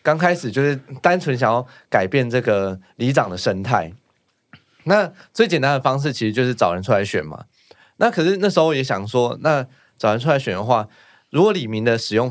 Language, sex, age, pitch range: Chinese, male, 20-39, 105-140 Hz